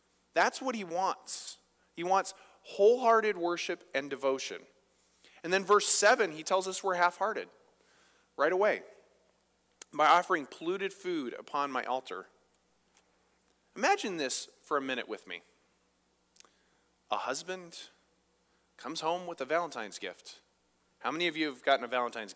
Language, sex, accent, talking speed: English, male, American, 135 wpm